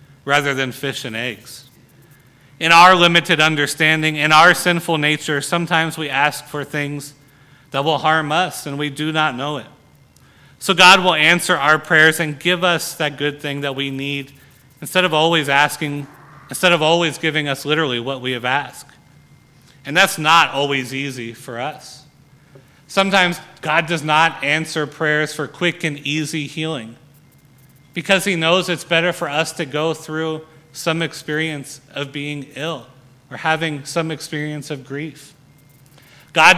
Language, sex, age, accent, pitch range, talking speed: English, male, 30-49, American, 140-160 Hz, 160 wpm